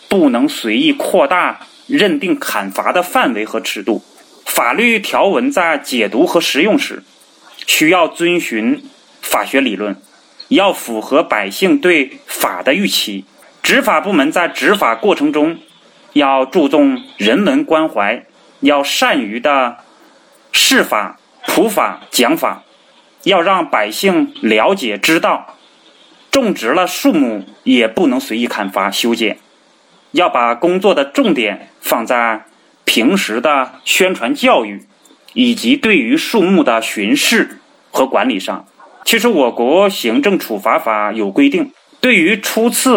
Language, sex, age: Chinese, male, 30-49